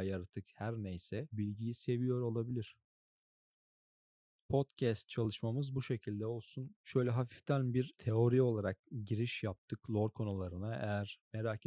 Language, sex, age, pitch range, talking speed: Turkish, male, 40-59, 105-125 Hz, 115 wpm